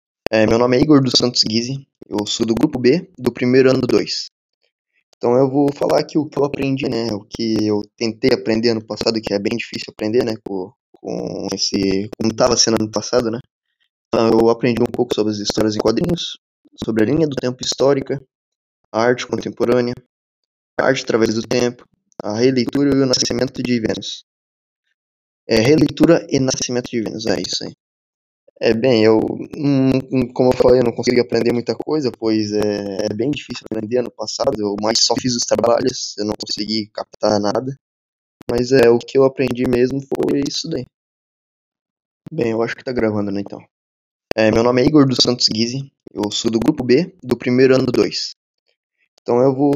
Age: 10-29